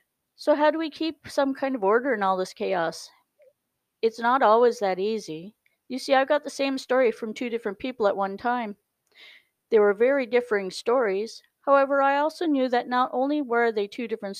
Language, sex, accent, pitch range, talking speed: English, female, American, 205-255 Hz, 200 wpm